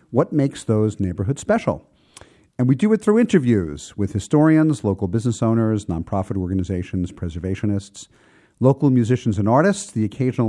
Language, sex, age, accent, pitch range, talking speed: English, male, 50-69, American, 95-135 Hz, 145 wpm